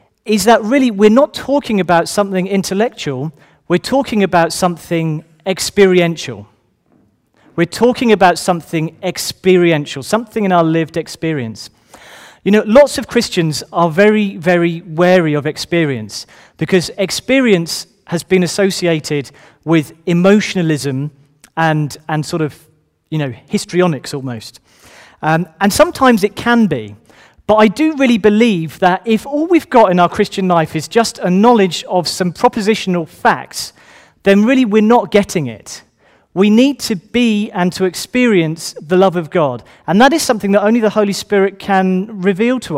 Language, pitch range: English, 160-215 Hz